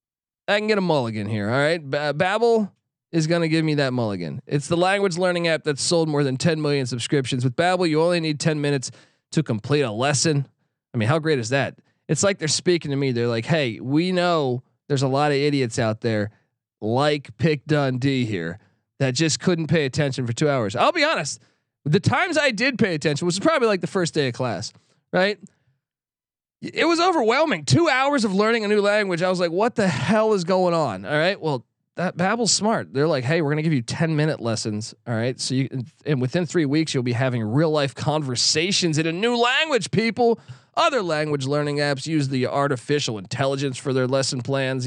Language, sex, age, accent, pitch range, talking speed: English, male, 20-39, American, 130-170 Hz, 215 wpm